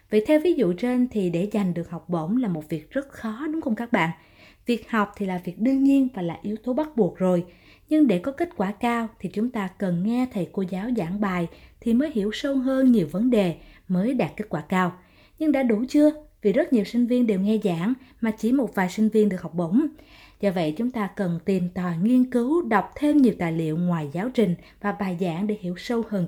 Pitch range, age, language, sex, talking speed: 180-245 Hz, 20-39, Vietnamese, female, 245 wpm